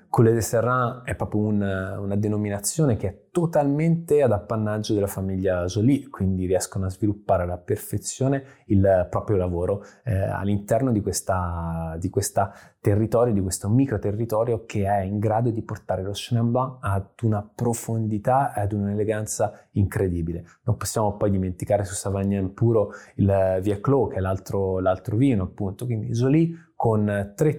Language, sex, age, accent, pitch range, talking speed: Italian, male, 20-39, native, 100-120 Hz, 145 wpm